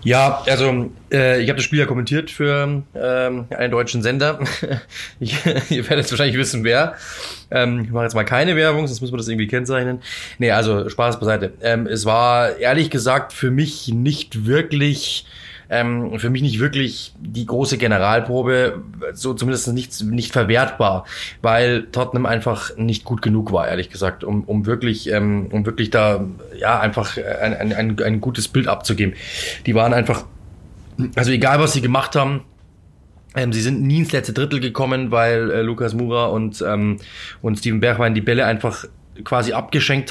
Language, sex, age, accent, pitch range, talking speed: German, male, 20-39, German, 110-130 Hz, 170 wpm